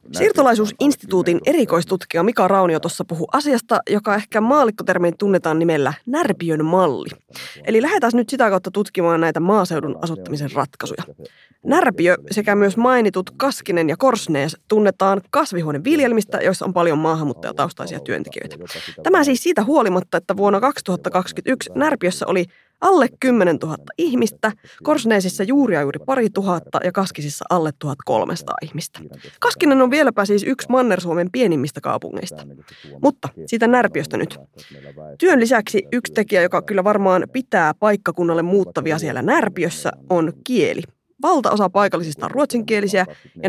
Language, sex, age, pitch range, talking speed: Finnish, female, 20-39, 165-230 Hz, 125 wpm